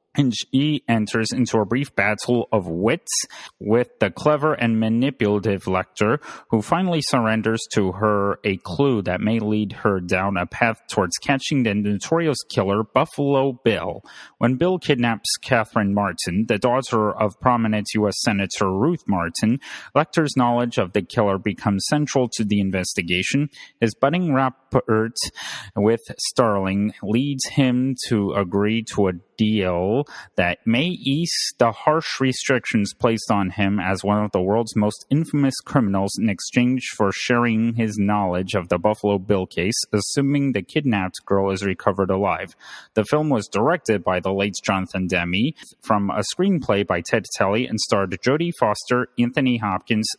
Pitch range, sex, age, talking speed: 100-130 Hz, male, 30-49, 150 wpm